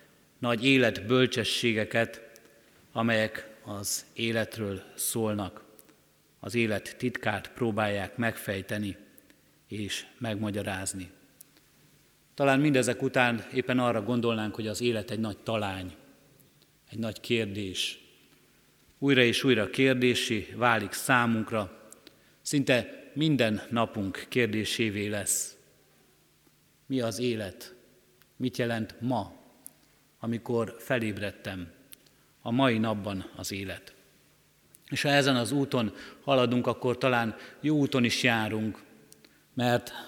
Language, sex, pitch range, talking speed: Hungarian, male, 110-125 Hz, 95 wpm